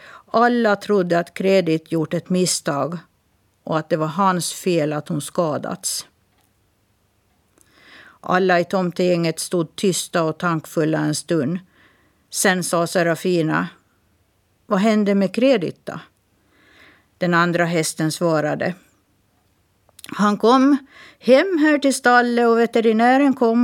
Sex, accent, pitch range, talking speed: female, native, 160-225 Hz, 115 wpm